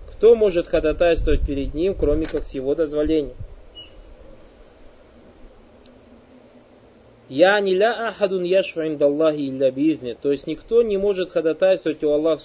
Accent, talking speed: native, 105 wpm